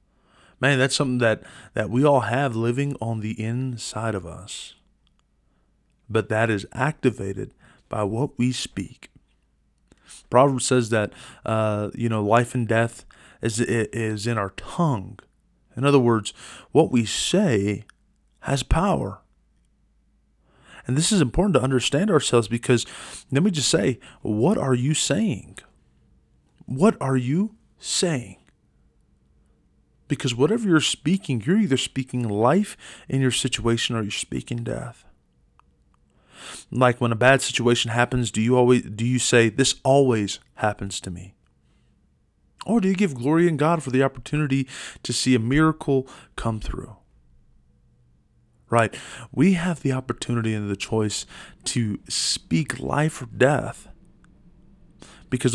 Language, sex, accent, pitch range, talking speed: English, male, American, 110-140 Hz, 135 wpm